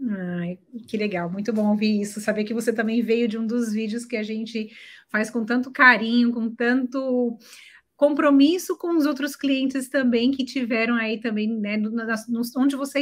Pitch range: 230-275 Hz